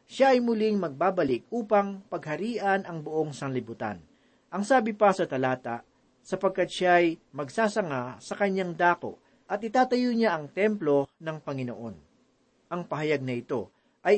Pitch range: 145-205 Hz